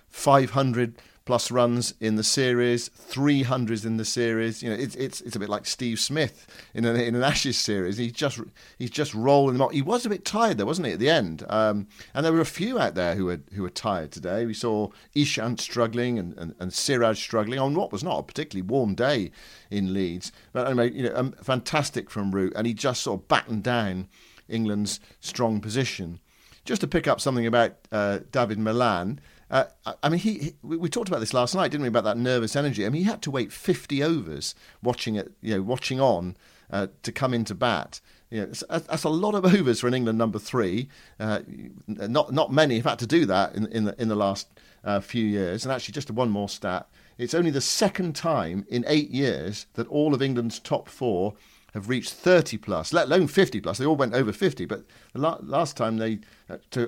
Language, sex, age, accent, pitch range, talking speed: English, male, 50-69, British, 105-140 Hz, 220 wpm